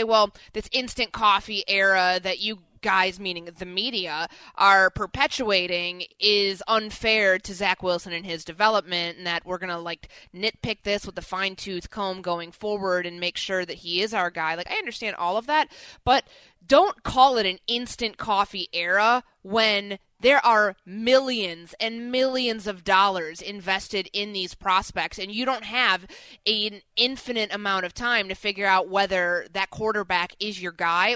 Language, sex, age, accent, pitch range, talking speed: English, female, 20-39, American, 185-230 Hz, 170 wpm